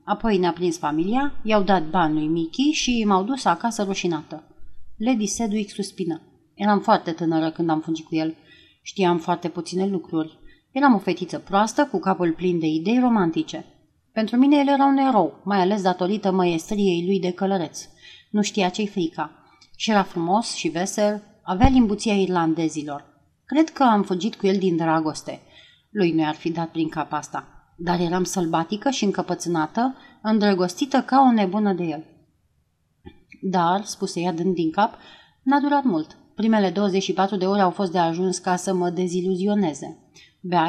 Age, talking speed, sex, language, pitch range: 30-49, 165 wpm, female, Romanian, 170-215 Hz